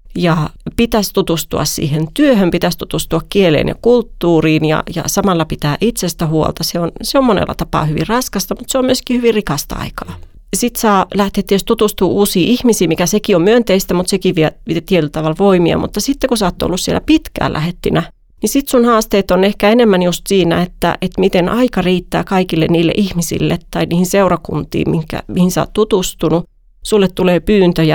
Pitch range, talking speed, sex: 170-220 Hz, 180 wpm, female